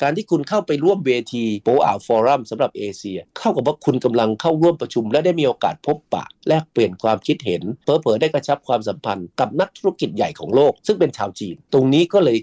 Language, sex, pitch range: Thai, male, 110-155 Hz